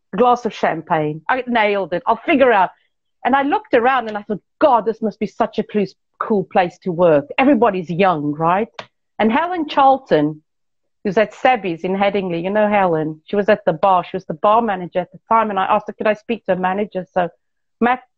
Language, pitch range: English, 175-230 Hz